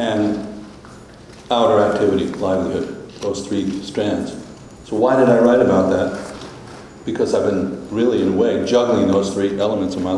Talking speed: 160 wpm